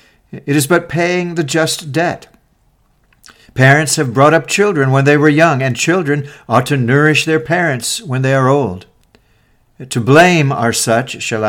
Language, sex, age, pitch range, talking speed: English, male, 60-79, 115-150 Hz, 165 wpm